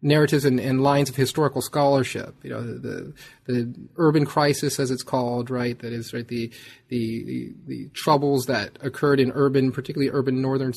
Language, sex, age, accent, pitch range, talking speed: English, male, 30-49, American, 125-145 Hz, 180 wpm